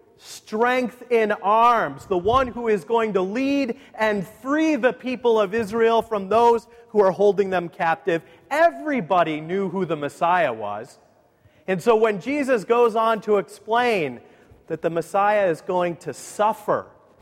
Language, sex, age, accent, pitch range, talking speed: English, male, 40-59, American, 180-250 Hz, 155 wpm